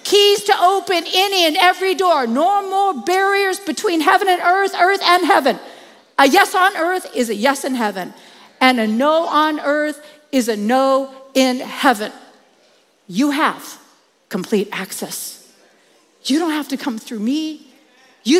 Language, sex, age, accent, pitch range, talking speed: English, female, 50-69, American, 255-310 Hz, 155 wpm